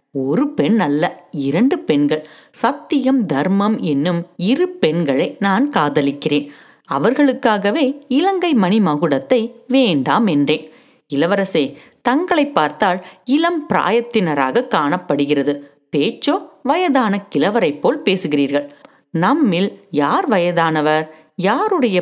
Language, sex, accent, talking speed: Tamil, female, native, 70 wpm